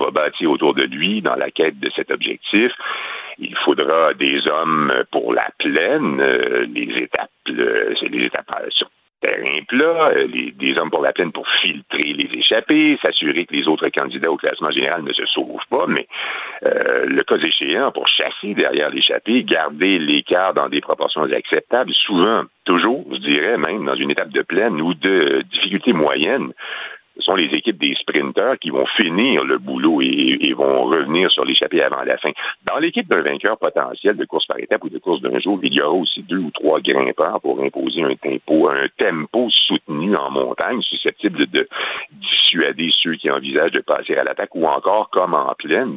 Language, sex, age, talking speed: French, male, 50-69, 190 wpm